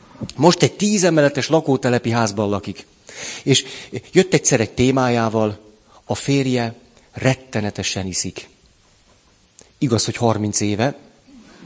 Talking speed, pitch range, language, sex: 100 wpm, 105-140 Hz, Hungarian, male